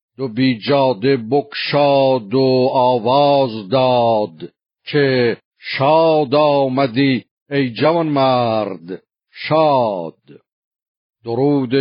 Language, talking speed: Persian, 75 wpm